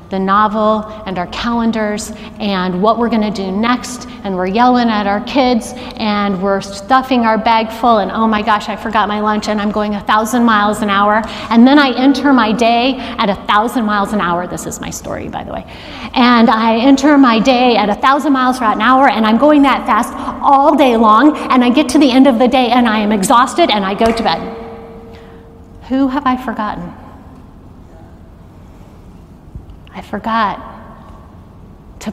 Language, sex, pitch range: English, female, 210-270 Hz